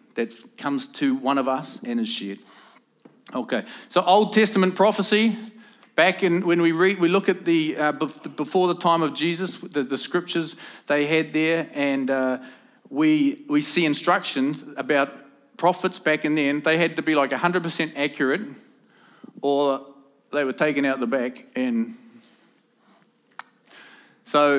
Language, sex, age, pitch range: English, male, 40-59, 140-195 Hz